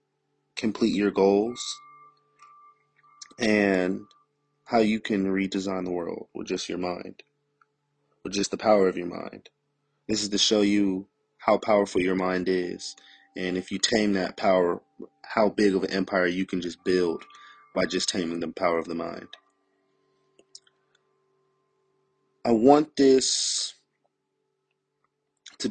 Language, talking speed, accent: English, 135 wpm, American